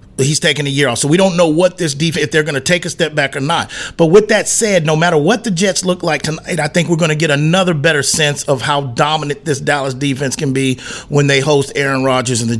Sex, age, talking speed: male, 40-59, 265 wpm